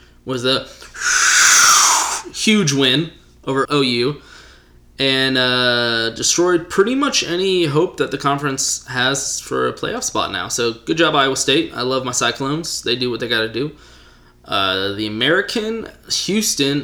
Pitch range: 115-155 Hz